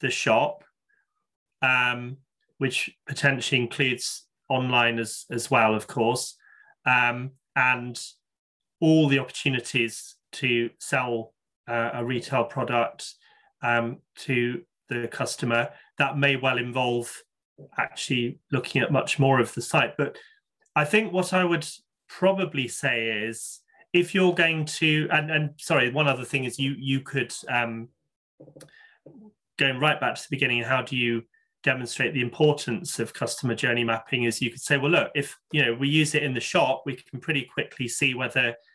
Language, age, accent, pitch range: English, 30-49, British, 120-150 Hz